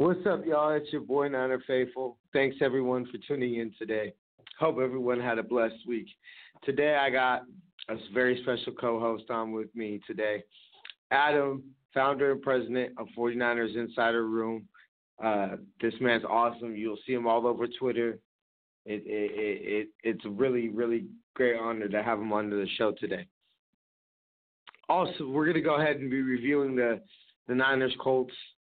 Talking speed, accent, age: 155 wpm, American, 30-49